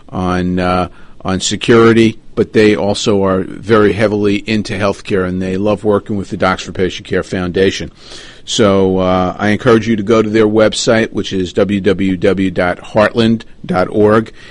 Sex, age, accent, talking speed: male, 40-59, American, 150 wpm